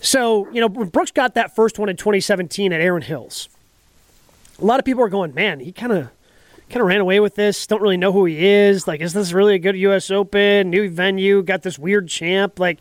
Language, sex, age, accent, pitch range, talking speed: English, male, 30-49, American, 190-235 Hz, 250 wpm